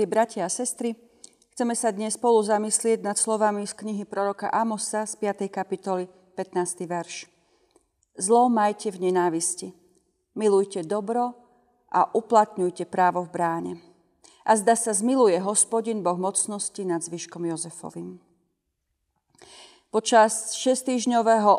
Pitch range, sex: 185-225 Hz, female